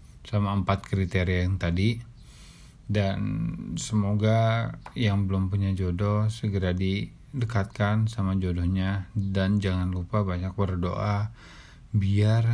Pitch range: 90-110 Hz